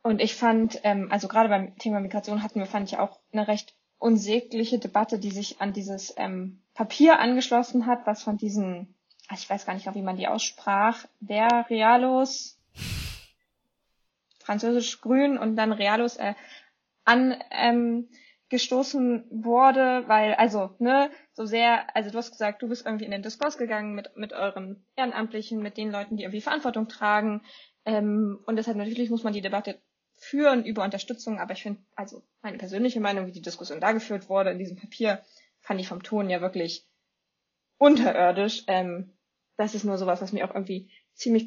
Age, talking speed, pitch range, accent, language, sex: 20-39, 170 wpm, 200-235 Hz, German, German, female